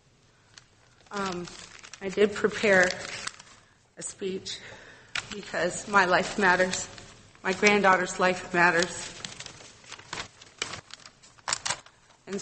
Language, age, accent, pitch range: English, 40-59, American, 170-210 Hz